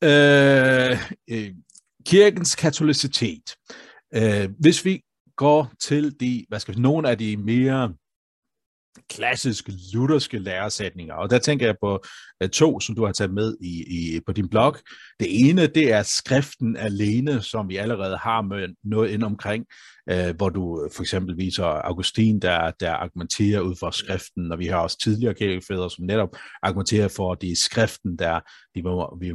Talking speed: 160 wpm